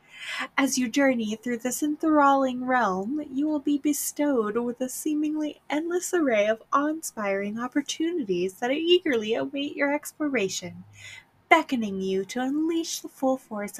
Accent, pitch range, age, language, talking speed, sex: American, 200-275 Hz, 10-29, English, 135 wpm, female